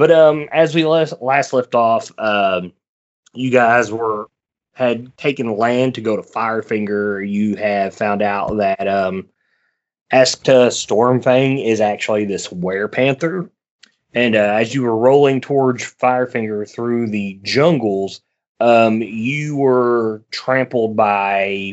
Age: 20-39